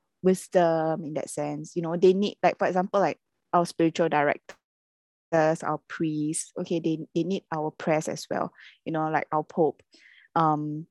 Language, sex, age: English, female, 20-39